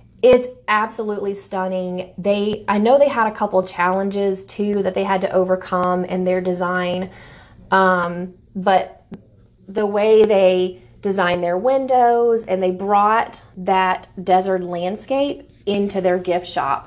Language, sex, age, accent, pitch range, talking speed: English, female, 30-49, American, 180-210 Hz, 135 wpm